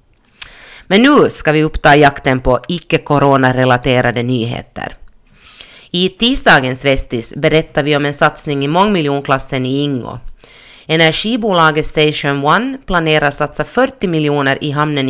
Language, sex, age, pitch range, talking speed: Swedish, female, 30-49, 135-170 Hz, 125 wpm